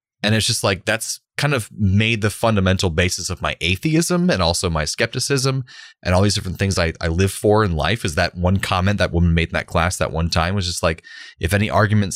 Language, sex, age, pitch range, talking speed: English, male, 20-39, 85-105 Hz, 235 wpm